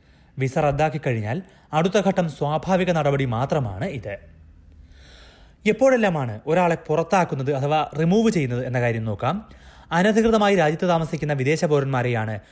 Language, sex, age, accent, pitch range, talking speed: Malayalam, male, 30-49, native, 125-175 Hz, 110 wpm